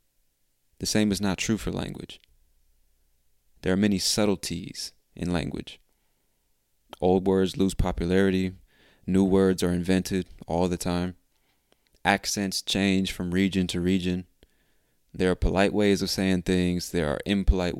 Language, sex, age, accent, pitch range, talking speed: English, male, 20-39, American, 75-100 Hz, 135 wpm